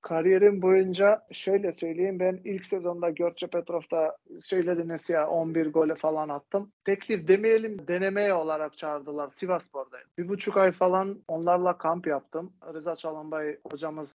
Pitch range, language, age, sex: 165-200 Hz, Turkish, 40-59, male